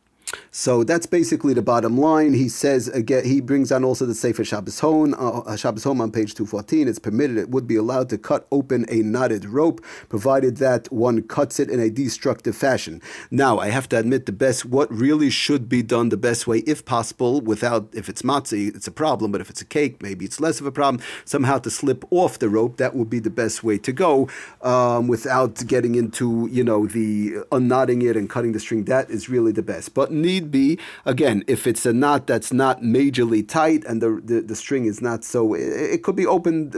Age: 40-59